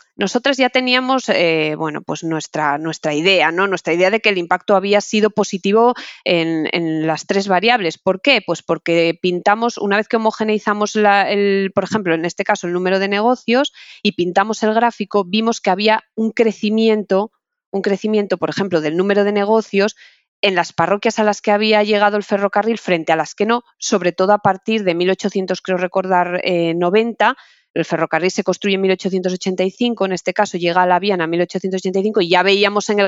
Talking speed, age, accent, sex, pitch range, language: 185 wpm, 20-39, Spanish, female, 170-210 Hz, Spanish